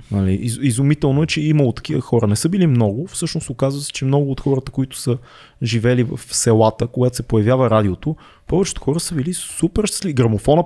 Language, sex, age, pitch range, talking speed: Bulgarian, male, 20-39, 120-165 Hz, 190 wpm